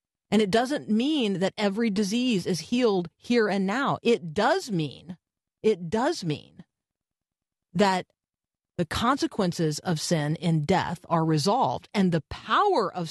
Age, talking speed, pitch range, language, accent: 40-59, 140 wpm, 165-210 Hz, English, American